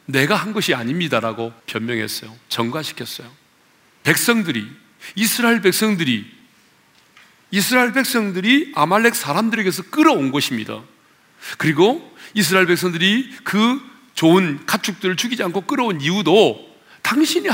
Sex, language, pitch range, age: male, Korean, 150-235 Hz, 40-59